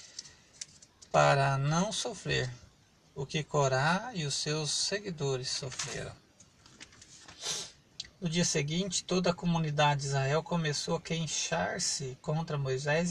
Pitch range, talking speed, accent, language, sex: 145-180 Hz, 110 wpm, Brazilian, Portuguese, male